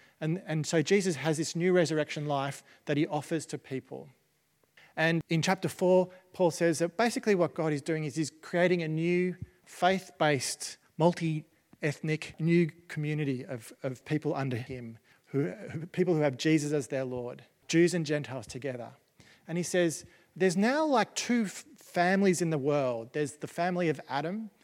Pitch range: 145-180 Hz